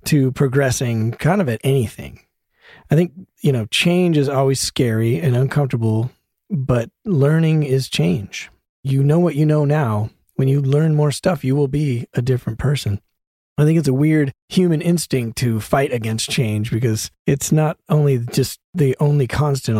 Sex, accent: male, American